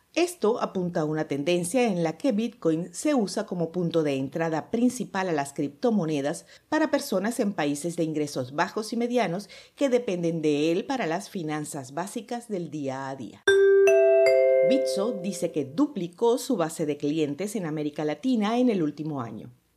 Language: Spanish